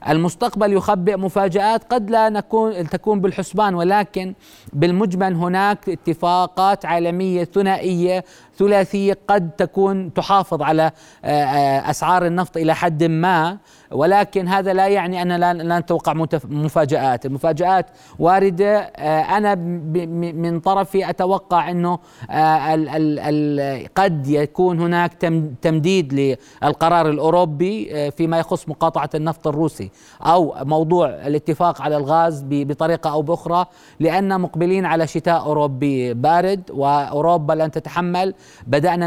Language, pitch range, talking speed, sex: Arabic, 155-185 Hz, 105 wpm, male